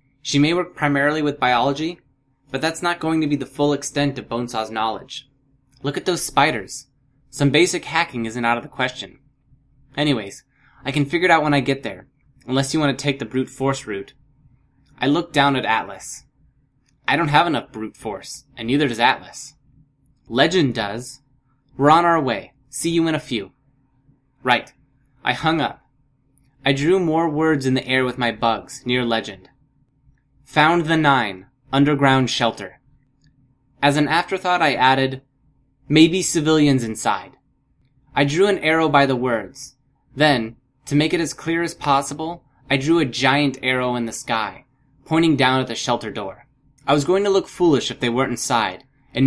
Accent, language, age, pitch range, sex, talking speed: American, English, 10-29, 125-145 Hz, male, 175 wpm